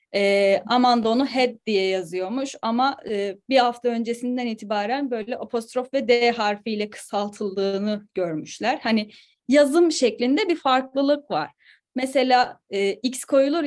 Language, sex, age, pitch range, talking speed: Turkish, female, 10-29, 215-295 Hz, 125 wpm